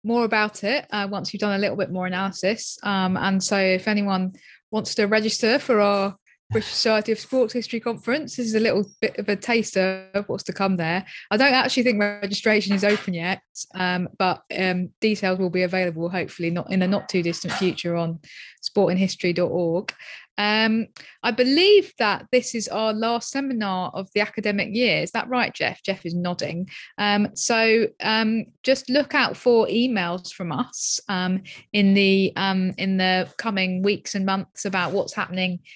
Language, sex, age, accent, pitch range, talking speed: English, female, 20-39, British, 185-220 Hz, 185 wpm